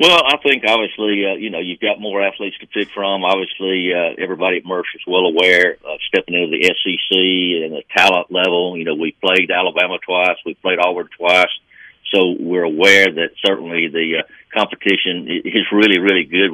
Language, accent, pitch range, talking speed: English, American, 90-105 Hz, 190 wpm